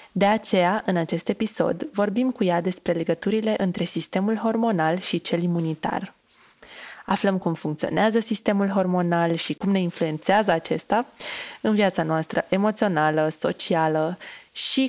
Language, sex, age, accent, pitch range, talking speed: Romanian, female, 20-39, native, 165-210 Hz, 130 wpm